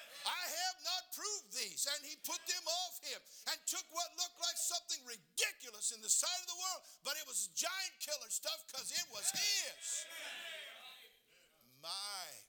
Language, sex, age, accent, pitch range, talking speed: English, male, 50-69, American, 200-325 Hz, 170 wpm